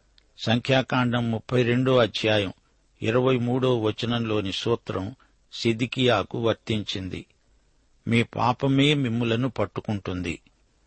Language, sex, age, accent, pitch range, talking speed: Telugu, male, 60-79, native, 110-125 Hz, 75 wpm